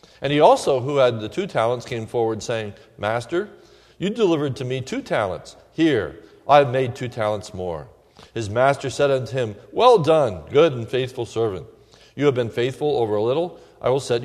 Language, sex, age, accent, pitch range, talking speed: English, male, 40-59, American, 120-155 Hz, 195 wpm